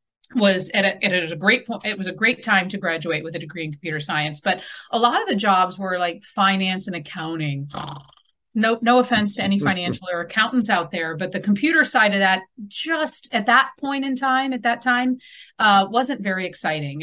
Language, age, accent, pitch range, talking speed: English, 40-59, American, 185-240 Hz, 215 wpm